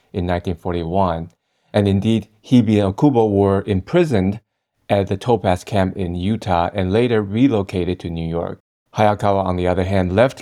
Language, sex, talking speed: English, male, 155 wpm